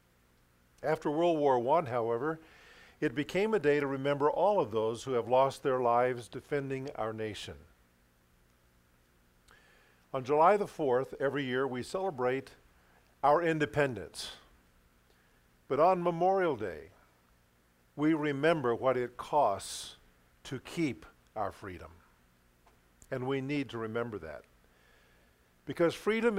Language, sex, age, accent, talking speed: English, male, 50-69, American, 120 wpm